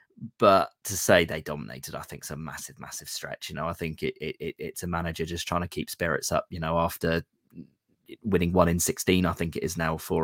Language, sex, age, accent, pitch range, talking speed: English, male, 20-39, British, 80-100 Hz, 240 wpm